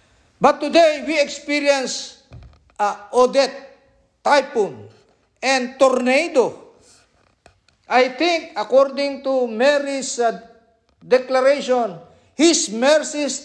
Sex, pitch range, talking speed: male, 195-280 Hz, 85 wpm